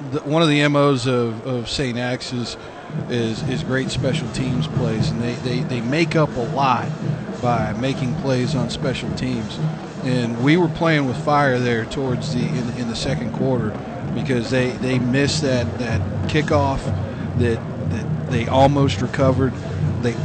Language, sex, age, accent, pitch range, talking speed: English, male, 40-59, American, 115-135 Hz, 165 wpm